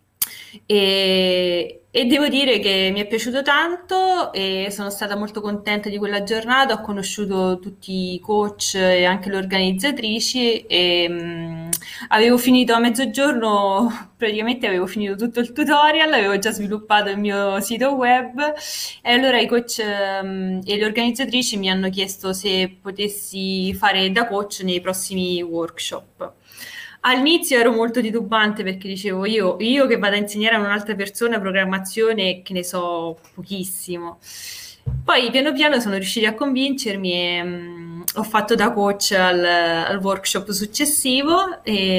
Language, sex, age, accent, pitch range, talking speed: Italian, female, 20-39, native, 180-230 Hz, 140 wpm